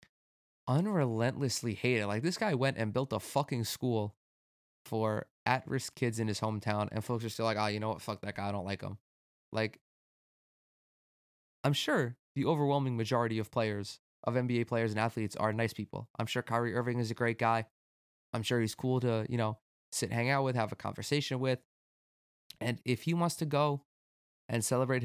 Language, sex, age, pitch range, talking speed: English, male, 20-39, 105-130 Hz, 195 wpm